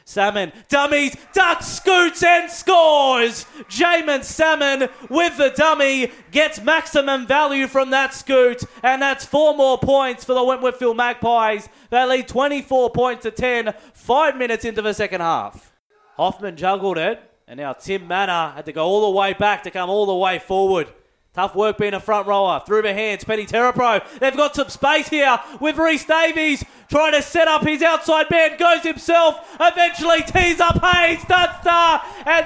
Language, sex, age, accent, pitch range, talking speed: English, male, 20-39, Australian, 235-315 Hz, 170 wpm